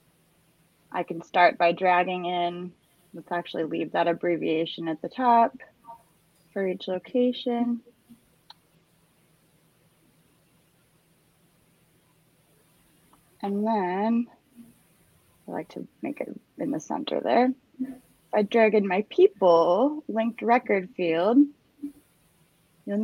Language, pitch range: English, 170-225 Hz